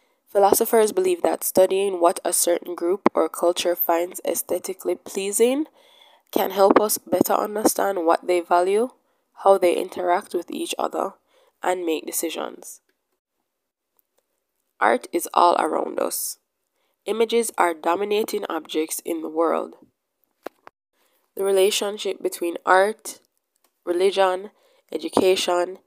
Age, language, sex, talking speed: 10-29, English, female, 110 wpm